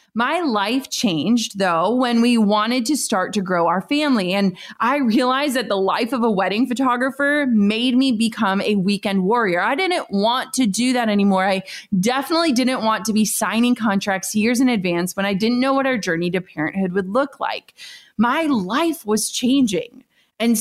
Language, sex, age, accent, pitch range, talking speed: English, female, 20-39, American, 200-260 Hz, 185 wpm